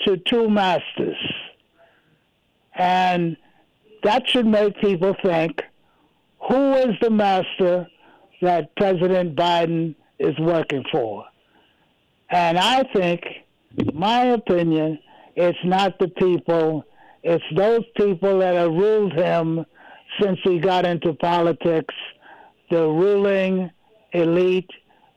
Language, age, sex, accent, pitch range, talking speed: English, 60-79, male, American, 170-205 Hz, 105 wpm